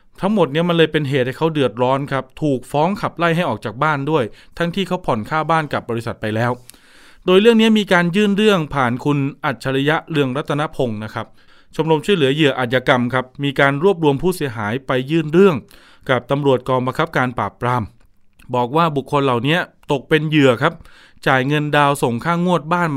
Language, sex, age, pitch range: Thai, male, 20-39, 130-165 Hz